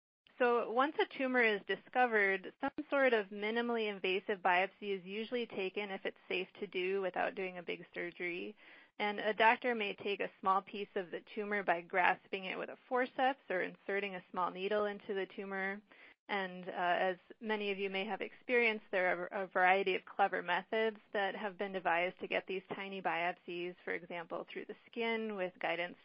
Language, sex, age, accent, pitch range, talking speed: English, female, 30-49, American, 185-220 Hz, 190 wpm